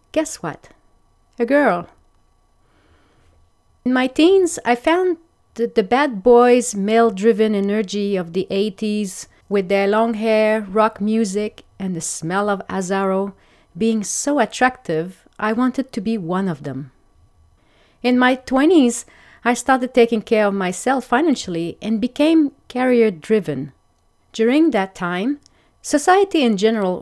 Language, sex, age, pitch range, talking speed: English, female, 40-59, 190-245 Hz, 130 wpm